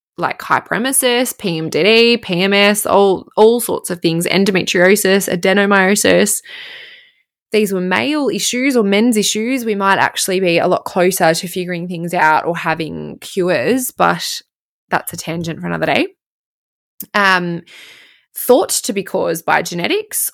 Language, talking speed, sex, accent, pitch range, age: English, 135 wpm, female, Australian, 170-230 Hz, 20-39